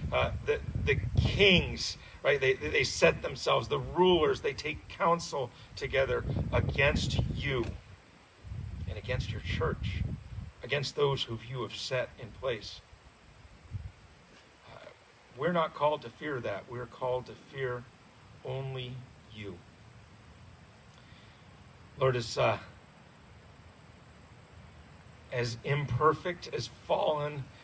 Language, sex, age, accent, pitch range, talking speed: English, male, 50-69, American, 105-140 Hz, 105 wpm